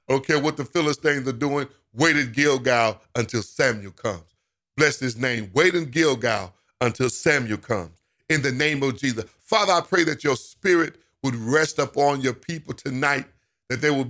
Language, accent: English, American